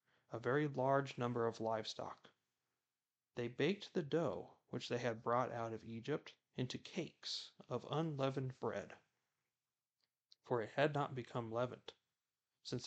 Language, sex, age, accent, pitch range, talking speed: English, male, 30-49, American, 115-135 Hz, 135 wpm